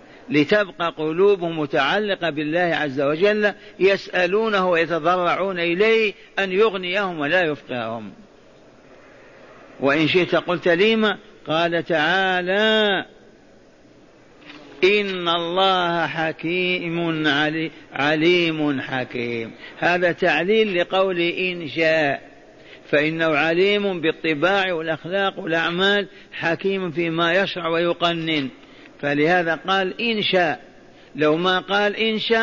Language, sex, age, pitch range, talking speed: Arabic, male, 50-69, 160-195 Hz, 90 wpm